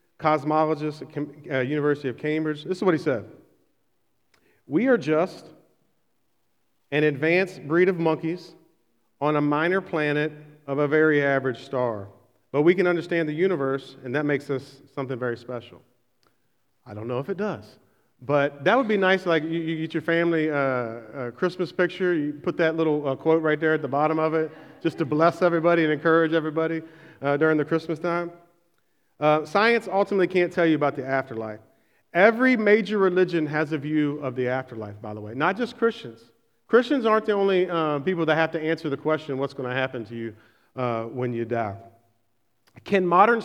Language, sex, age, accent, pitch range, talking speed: English, male, 40-59, American, 130-165 Hz, 180 wpm